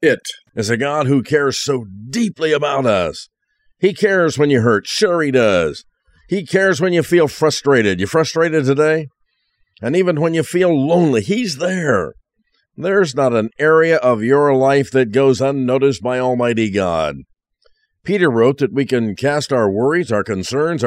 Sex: male